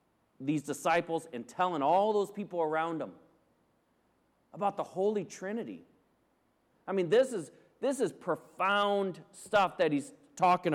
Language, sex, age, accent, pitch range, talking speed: English, male, 40-59, American, 150-205 Hz, 135 wpm